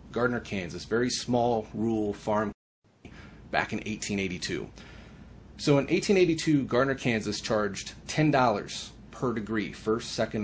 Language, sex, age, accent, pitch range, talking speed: English, male, 30-49, American, 105-130 Hz, 115 wpm